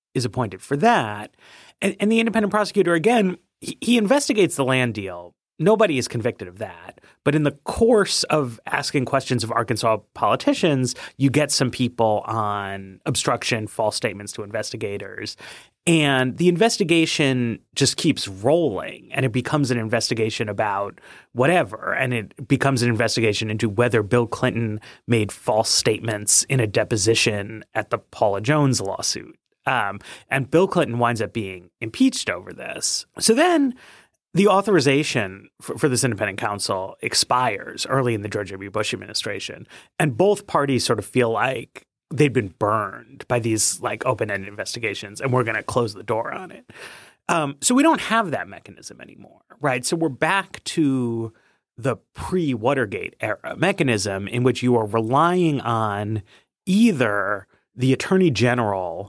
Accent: American